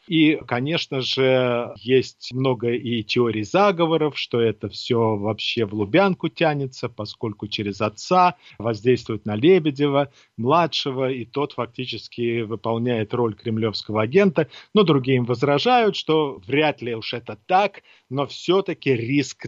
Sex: male